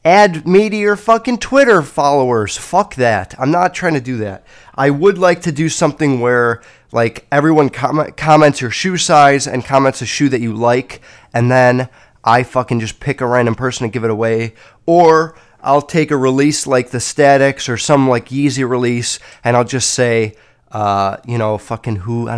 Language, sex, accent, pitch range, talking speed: English, male, American, 115-150 Hz, 195 wpm